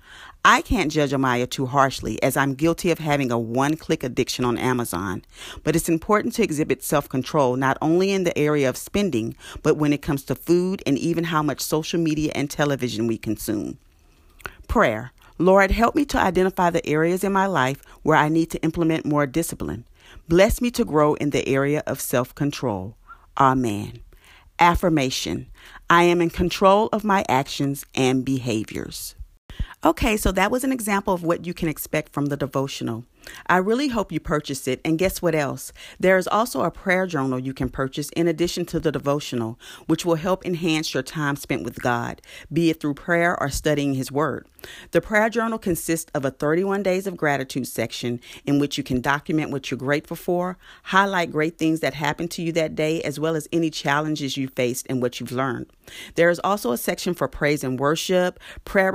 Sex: female